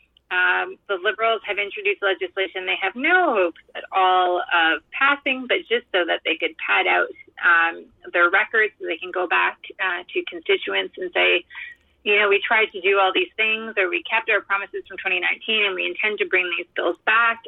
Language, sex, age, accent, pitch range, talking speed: English, female, 30-49, American, 180-300 Hz, 200 wpm